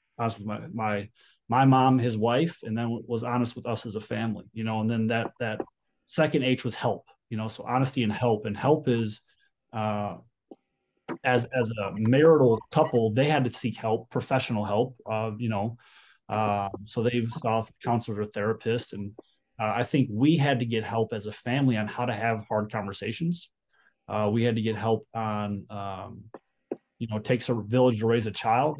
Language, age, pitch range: English, 20-39, 110-125 Hz